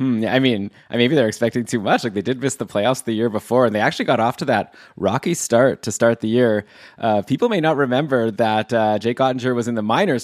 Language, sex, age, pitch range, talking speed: English, male, 20-39, 110-125 Hz, 245 wpm